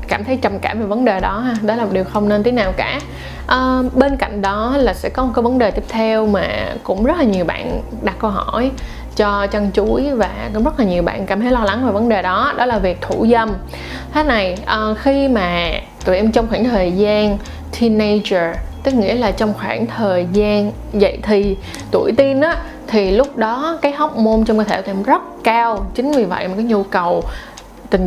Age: 20-39